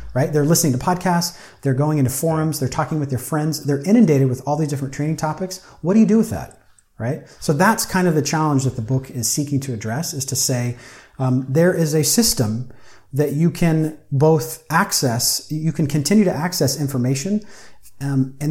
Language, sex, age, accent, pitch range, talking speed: English, male, 30-49, American, 130-165 Hz, 205 wpm